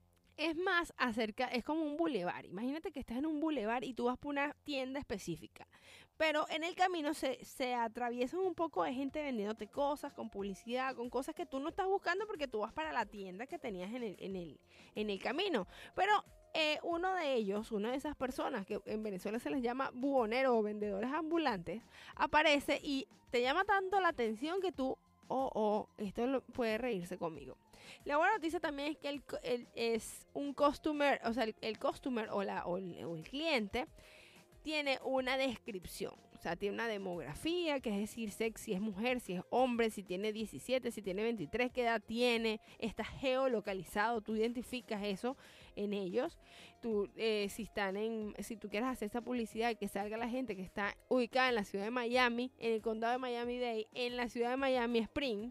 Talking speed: 180 wpm